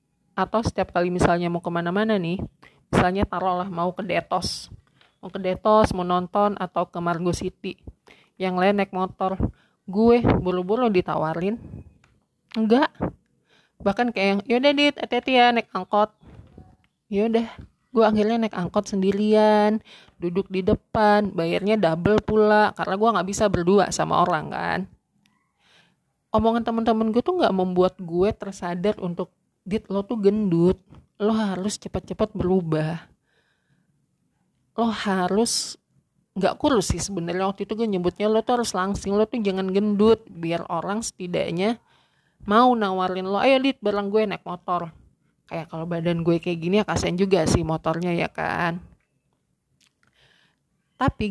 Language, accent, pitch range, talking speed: Indonesian, native, 180-215 Hz, 140 wpm